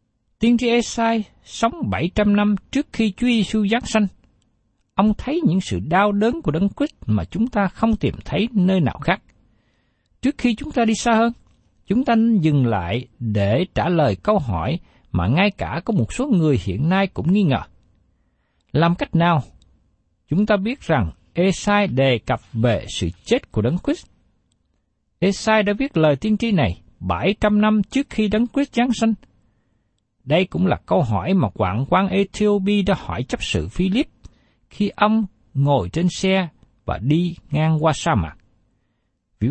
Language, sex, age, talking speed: Vietnamese, male, 60-79, 175 wpm